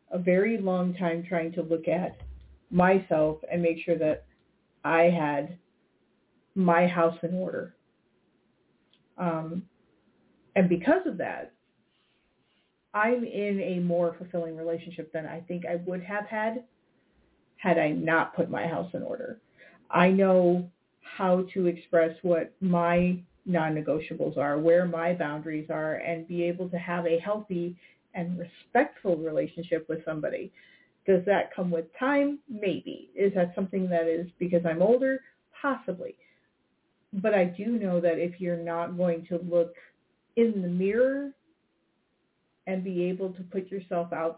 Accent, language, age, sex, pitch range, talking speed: American, English, 40-59, female, 165-190 Hz, 145 wpm